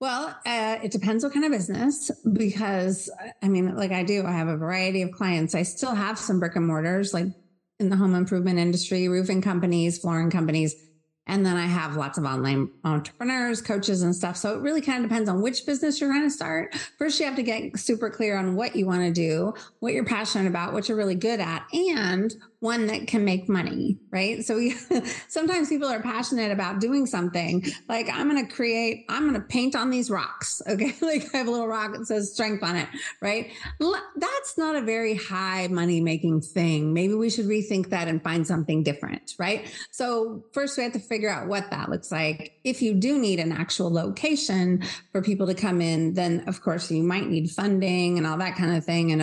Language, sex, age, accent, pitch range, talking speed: English, female, 30-49, American, 175-235 Hz, 215 wpm